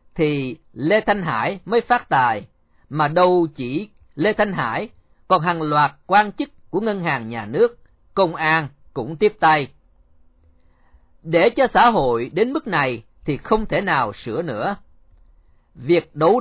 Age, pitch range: 40-59, 130-195 Hz